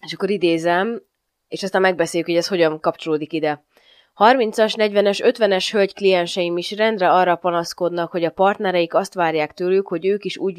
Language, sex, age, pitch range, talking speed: Hungarian, female, 20-39, 165-195 Hz, 170 wpm